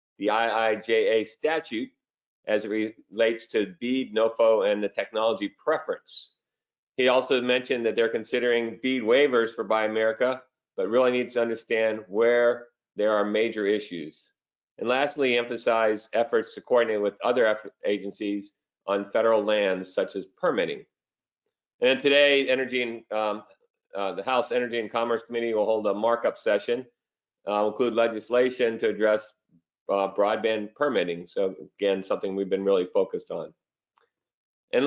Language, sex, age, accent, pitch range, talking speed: English, male, 50-69, American, 110-135 Hz, 145 wpm